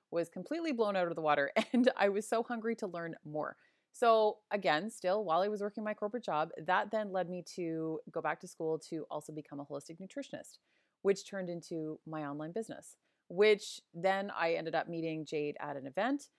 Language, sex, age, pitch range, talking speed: English, female, 30-49, 160-215 Hz, 205 wpm